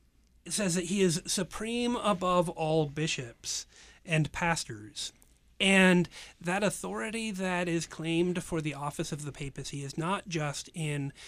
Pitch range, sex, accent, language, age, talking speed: 140-180 Hz, male, American, English, 30-49, 140 wpm